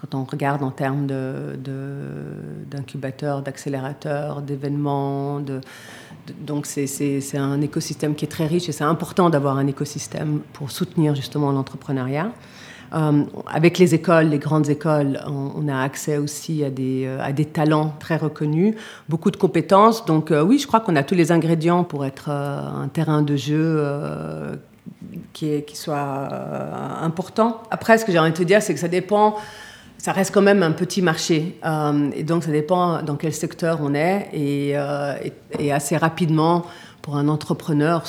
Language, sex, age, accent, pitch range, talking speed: French, female, 40-59, French, 140-165 Hz, 185 wpm